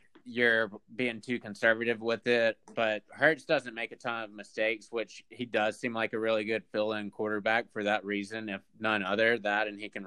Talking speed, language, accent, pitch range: 205 wpm, English, American, 105-125 Hz